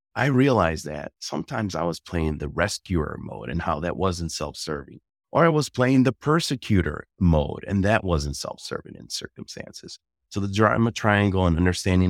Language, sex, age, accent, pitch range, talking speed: English, male, 30-49, American, 80-105 Hz, 170 wpm